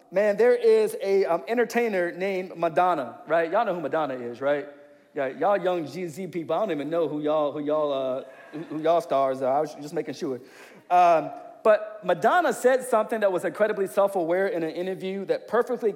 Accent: American